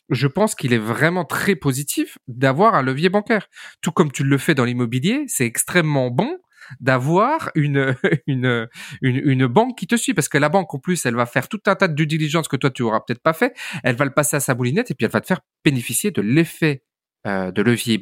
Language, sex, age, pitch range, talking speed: French, male, 30-49, 130-180 Hz, 235 wpm